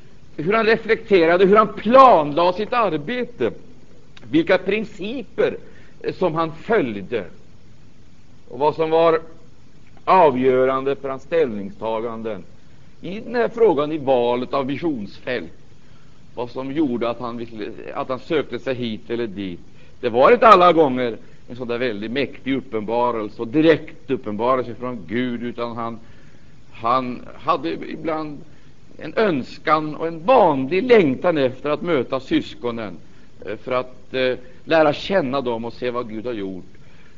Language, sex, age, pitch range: Swedish, male, 60-79, 115-165 Hz